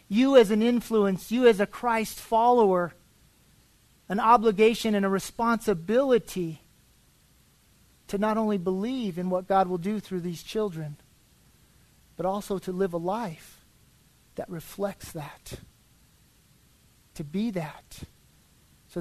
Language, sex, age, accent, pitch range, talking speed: English, male, 40-59, American, 185-225 Hz, 125 wpm